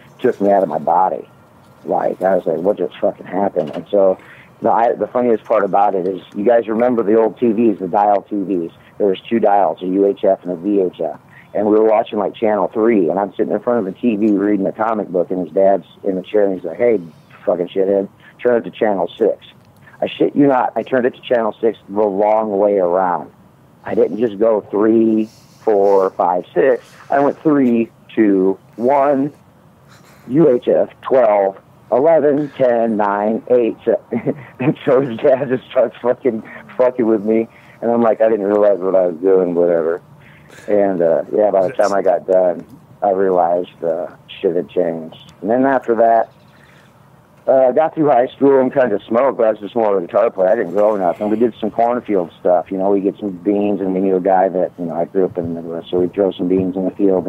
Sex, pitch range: male, 95-115 Hz